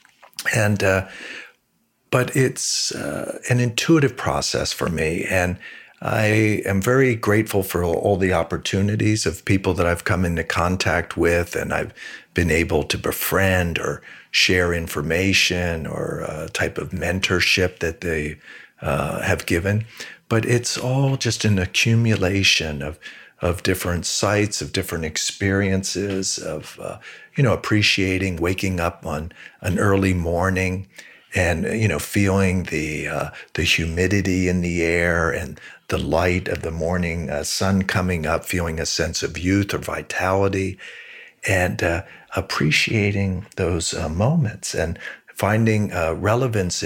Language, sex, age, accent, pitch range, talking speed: English, male, 50-69, American, 85-105 Hz, 140 wpm